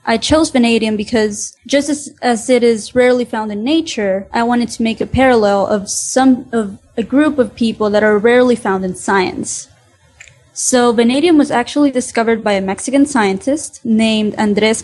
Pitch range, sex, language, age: 220-270 Hz, female, English, 20-39